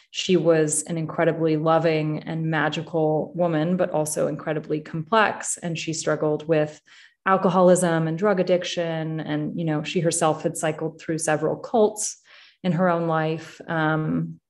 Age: 30-49